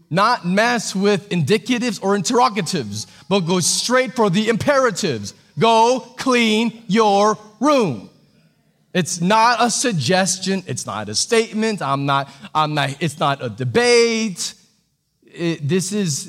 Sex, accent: male, American